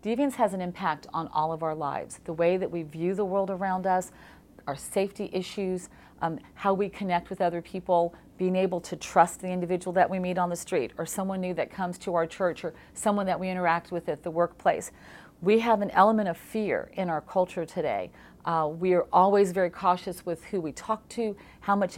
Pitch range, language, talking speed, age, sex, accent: 170-200 Hz, English, 220 wpm, 40-59, female, American